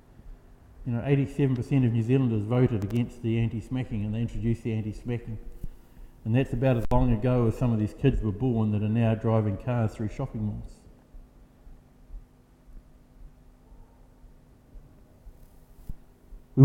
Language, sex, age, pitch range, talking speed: English, male, 50-69, 110-140 Hz, 135 wpm